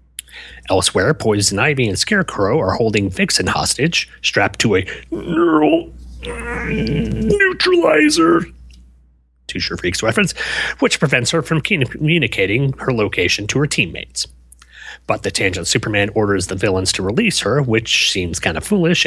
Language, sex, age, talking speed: English, male, 30-49, 135 wpm